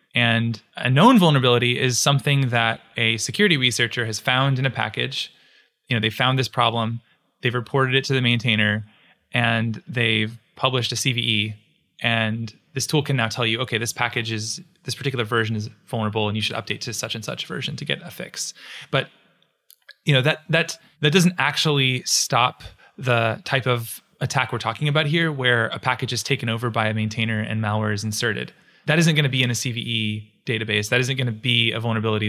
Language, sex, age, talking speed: English, male, 20-39, 195 wpm